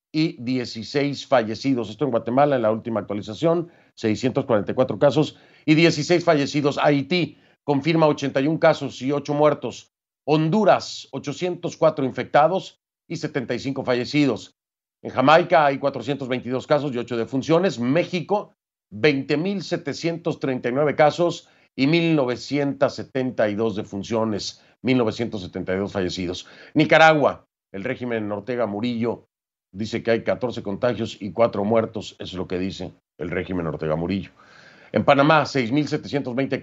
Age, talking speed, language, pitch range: 40-59, 115 wpm, Spanish, 110-145 Hz